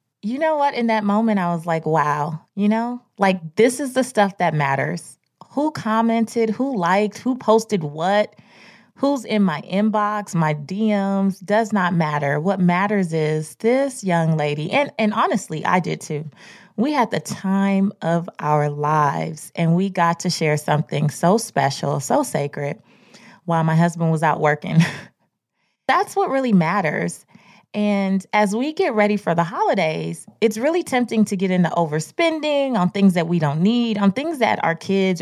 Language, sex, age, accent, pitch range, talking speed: English, female, 20-39, American, 165-220 Hz, 170 wpm